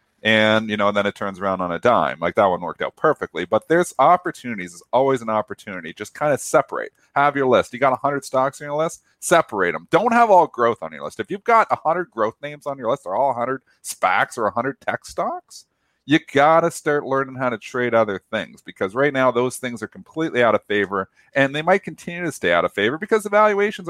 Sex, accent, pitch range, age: male, American, 110-150 Hz, 40-59